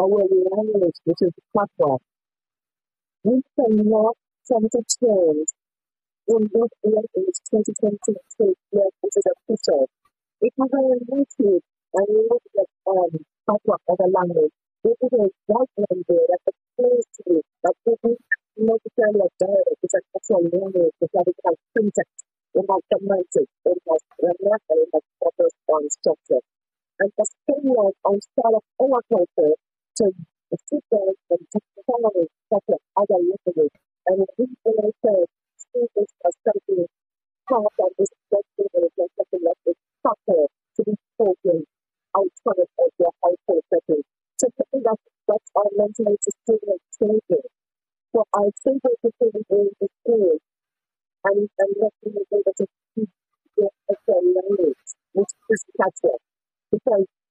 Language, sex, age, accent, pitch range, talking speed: English, female, 50-69, American, 190-255 Hz, 115 wpm